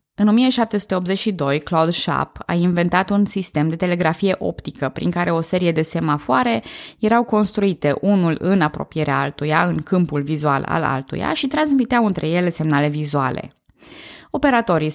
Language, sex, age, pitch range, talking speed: Romanian, female, 20-39, 155-205 Hz, 140 wpm